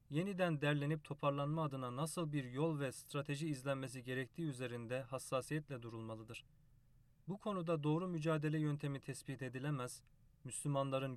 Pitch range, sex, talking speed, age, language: 130-155 Hz, male, 120 wpm, 30-49, Turkish